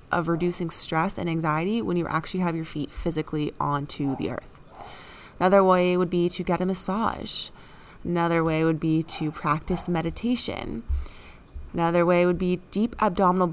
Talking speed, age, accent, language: 160 wpm, 20-39, American, English